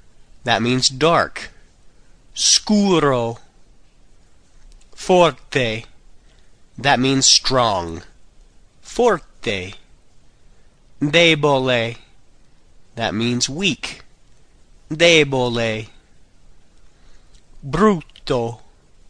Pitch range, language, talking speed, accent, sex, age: 100-145 Hz, Italian, 45 wpm, American, male, 40-59